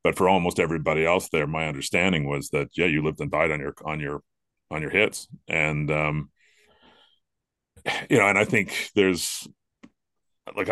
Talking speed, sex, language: 175 wpm, male, English